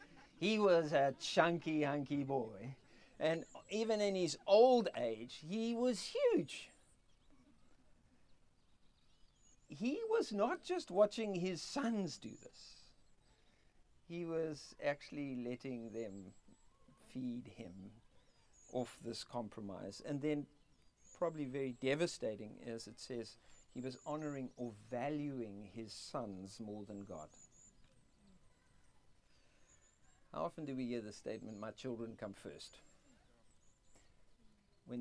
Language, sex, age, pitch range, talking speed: English, male, 50-69, 105-145 Hz, 110 wpm